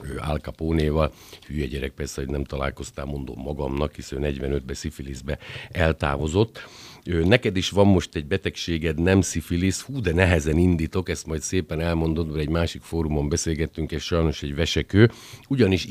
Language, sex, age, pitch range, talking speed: Hungarian, male, 60-79, 75-90 Hz, 150 wpm